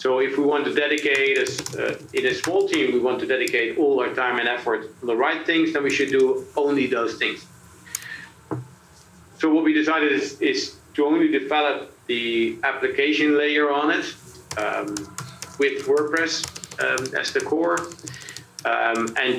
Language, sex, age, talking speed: English, male, 50-69, 165 wpm